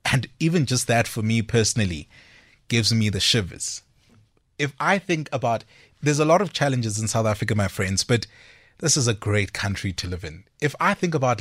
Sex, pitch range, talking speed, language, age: male, 105-130 Hz, 200 wpm, English, 30-49